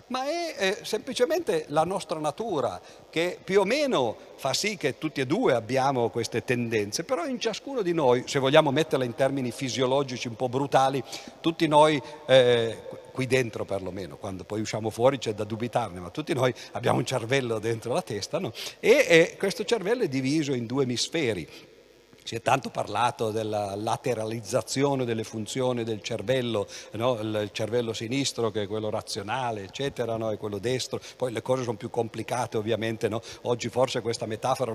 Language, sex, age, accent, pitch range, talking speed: Italian, male, 50-69, native, 115-155 Hz, 175 wpm